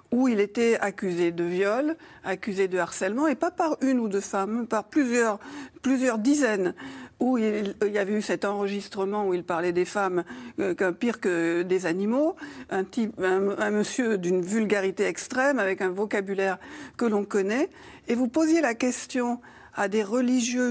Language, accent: French, French